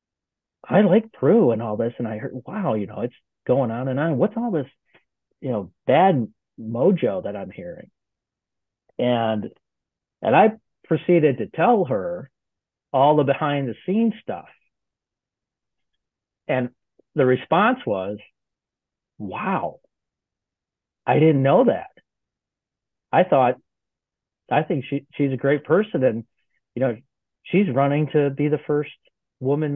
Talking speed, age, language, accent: 135 wpm, 40-59, English, American